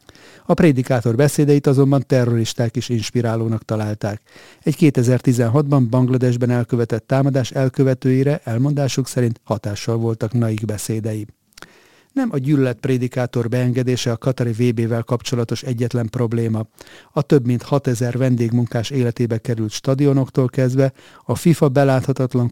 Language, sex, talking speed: Hungarian, male, 110 wpm